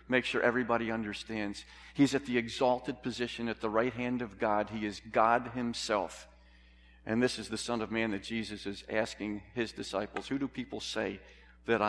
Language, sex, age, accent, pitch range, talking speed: English, male, 50-69, American, 105-125 Hz, 185 wpm